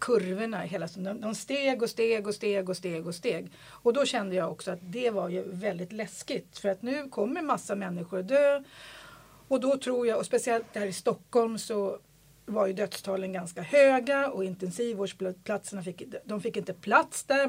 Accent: native